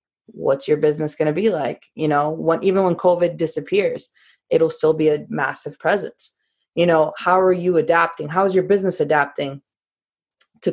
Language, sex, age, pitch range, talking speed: English, female, 20-39, 150-175 Hz, 180 wpm